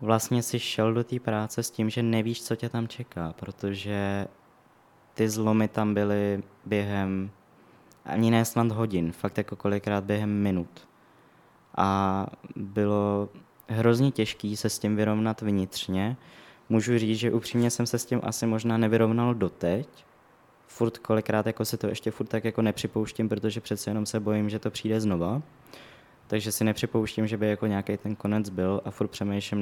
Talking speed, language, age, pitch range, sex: 165 wpm, Czech, 20-39, 100-115 Hz, male